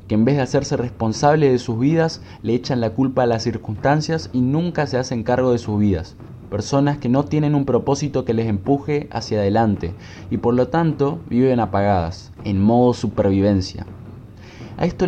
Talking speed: 185 wpm